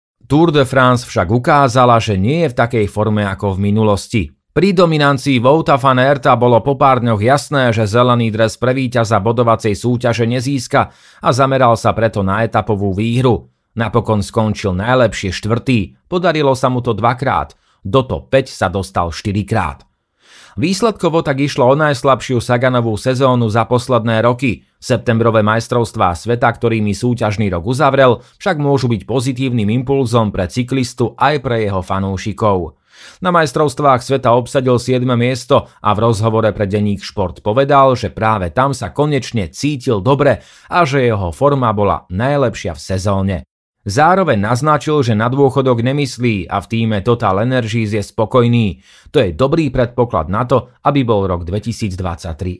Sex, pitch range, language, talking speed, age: male, 105-130 Hz, Slovak, 150 wpm, 30-49